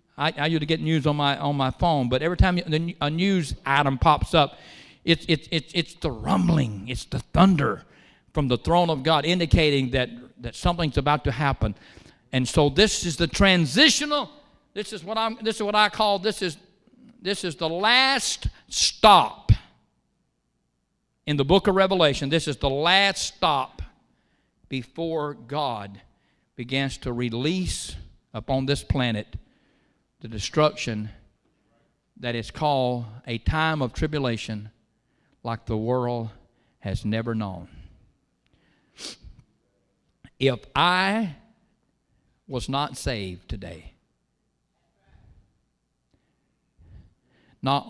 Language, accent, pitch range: English, American, 120-165 Hz